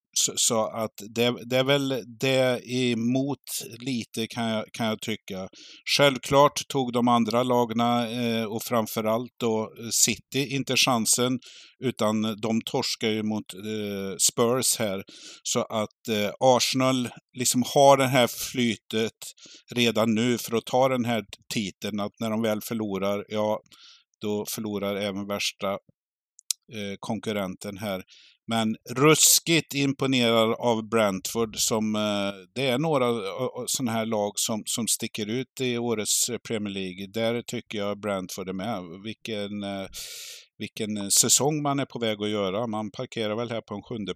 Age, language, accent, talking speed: 50-69, Swedish, native, 145 wpm